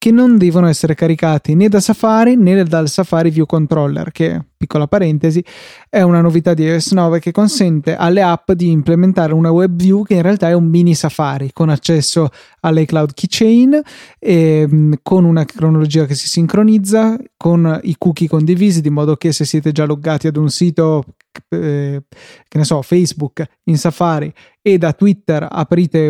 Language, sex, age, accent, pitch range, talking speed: Italian, male, 20-39, native, 155-180 Hz, 170 wpm